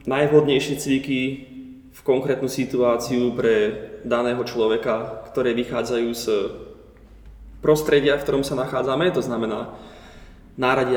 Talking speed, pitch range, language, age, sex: 105 wpm, 120-145 Hz, Slovak, 20-39, male